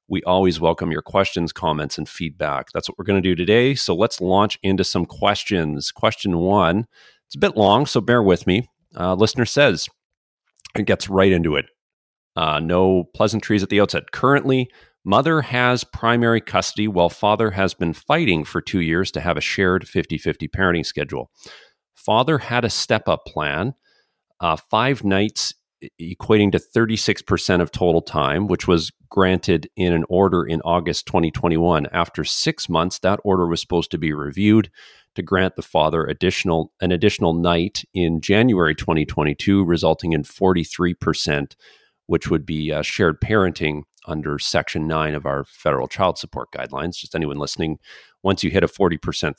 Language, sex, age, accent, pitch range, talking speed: English, male, 40-59, American, 80-100 Hz, 165 wpm